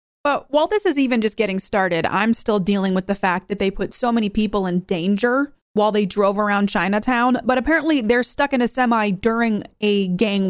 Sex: female